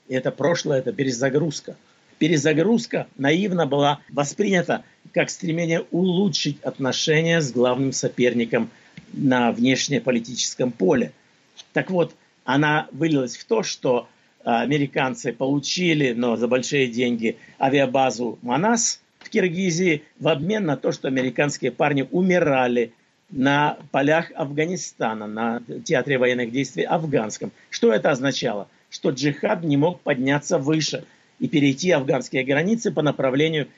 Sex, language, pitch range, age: male, Russian, 135-175 Hz, 50-69